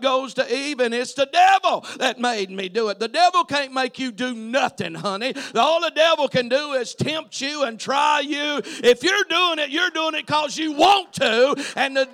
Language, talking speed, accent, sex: English, 215 wpm, American, male